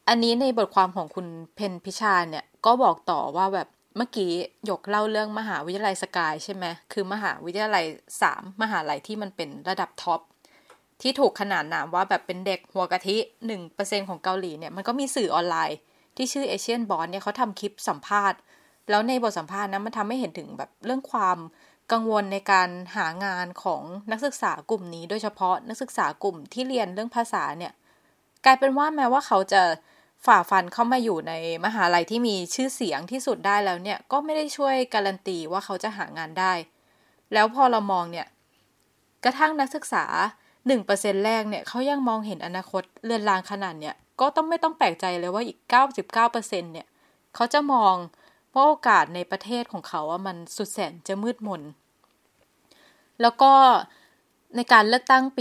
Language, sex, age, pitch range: Thai, female, 20-39, 185-240 Hz